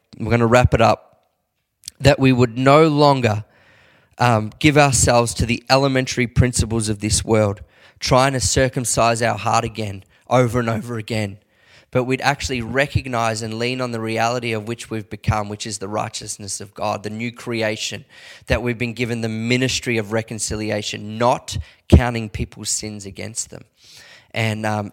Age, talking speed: 20-39, 165 wpm